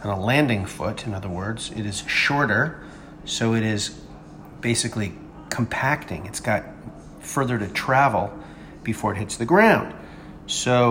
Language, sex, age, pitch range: English, male, 40-59, 105-140 Hz